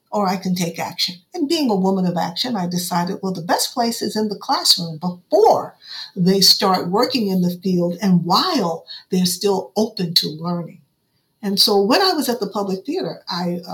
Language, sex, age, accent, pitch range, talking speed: English, female, 50-69, American, 175-200 Hz, 200 wpm